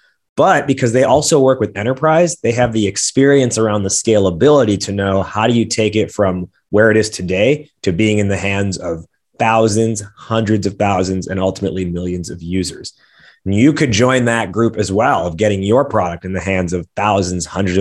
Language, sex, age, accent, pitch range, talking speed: English, male, 20-39, American, 95-135 Hz, 200 wpm